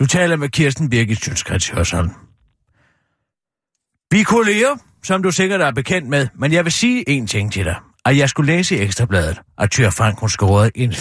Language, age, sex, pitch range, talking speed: Danish, 40-59, male, 160-260 Hz, 185 wpm